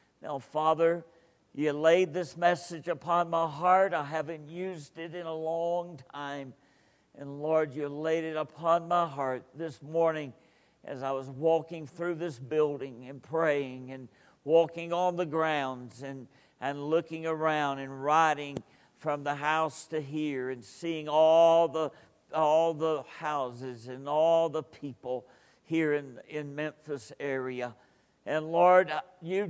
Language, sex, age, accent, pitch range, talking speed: English, male, 60-79, American, 140-165 Hz, 145 wpm